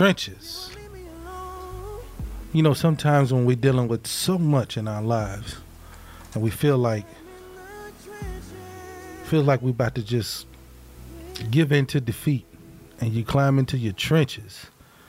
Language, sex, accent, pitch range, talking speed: English, male, American, 105-145 Hz, 130 wpm